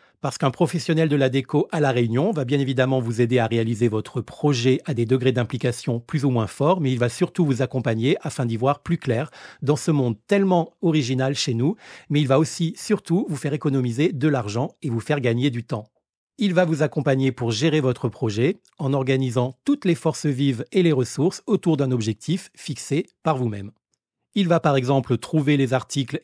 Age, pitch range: 40-59, 125-165 Hz